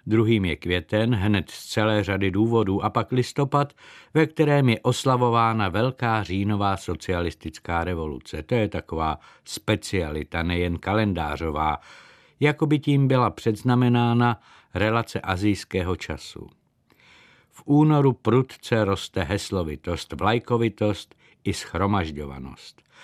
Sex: male